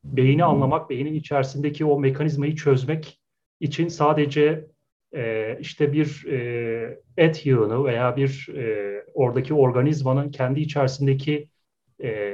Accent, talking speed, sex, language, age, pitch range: native, 110 wpm, male, Turkish, 40-59, 135-155 Hz